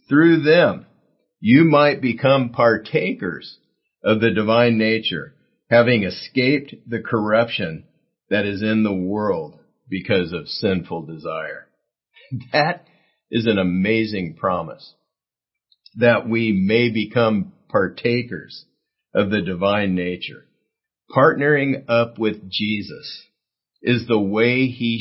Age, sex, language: 50-69, male, English